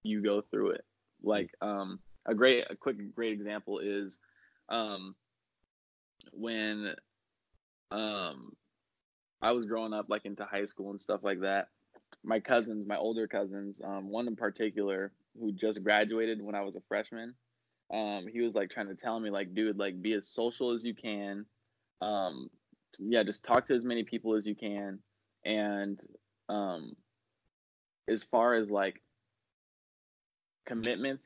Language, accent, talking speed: English, American, 155 wpm